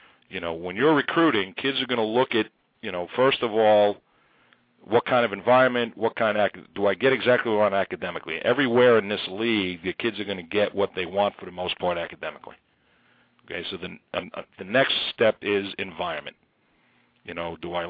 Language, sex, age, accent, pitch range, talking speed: English, male, 50-69, American, 105-130 Hz, 205 wpm